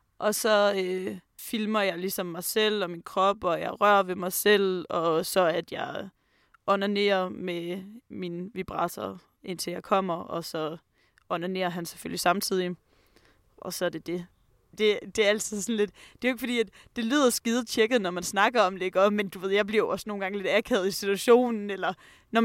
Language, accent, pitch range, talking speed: Danish, native, 185-215 Hz, 210 wpm